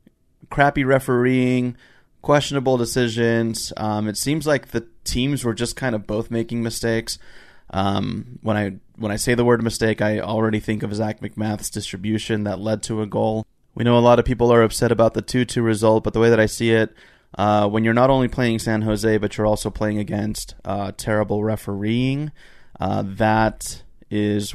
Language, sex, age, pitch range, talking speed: English, male, 20-39, 105-120 Hz, 185 wpm